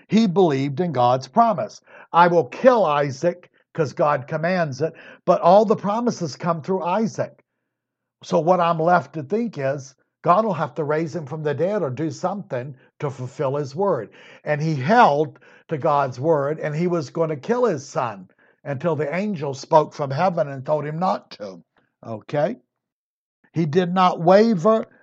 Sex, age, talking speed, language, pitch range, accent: male, 60-79, 175 wpm, English, 145-180 Hz, American